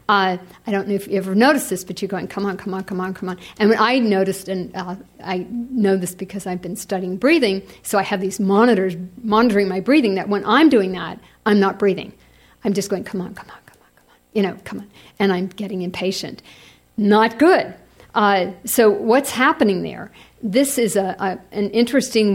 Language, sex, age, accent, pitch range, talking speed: English, female, 50-69, American, 190-220 Hz, 220 wpm